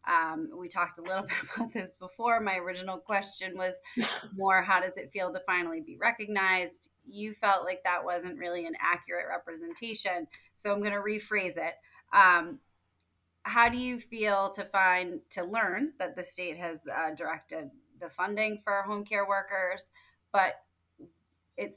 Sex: female